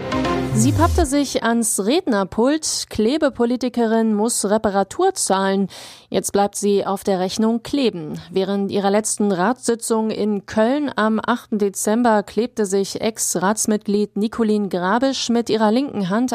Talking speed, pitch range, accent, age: 125 wpm, 195-235 Hz, German, 30-49